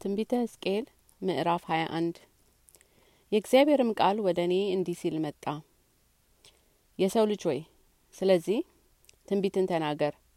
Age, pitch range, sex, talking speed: 30-49, 165-195 Hz, female, 85 wpm